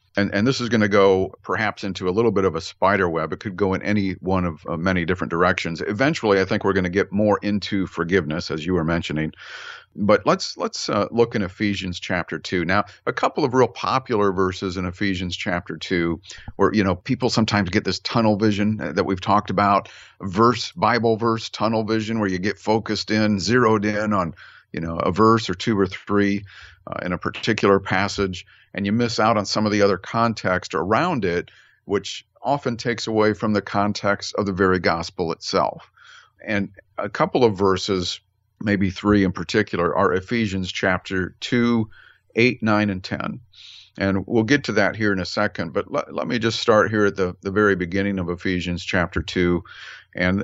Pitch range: 95-110 Hz